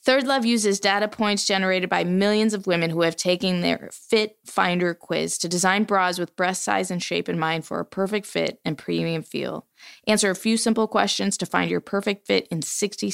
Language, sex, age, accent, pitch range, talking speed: English, female, 20-39, American, 175-210 Hz, 210 wpm